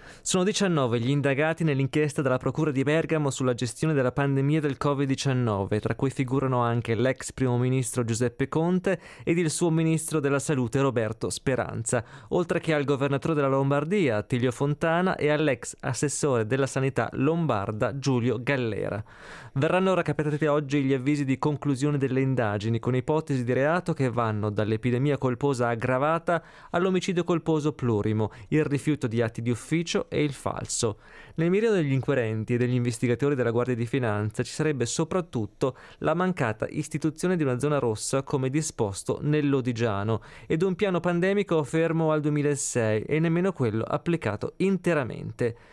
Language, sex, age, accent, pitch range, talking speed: Italian, male, 20-39, native, 125-155 Hz, 150 wpm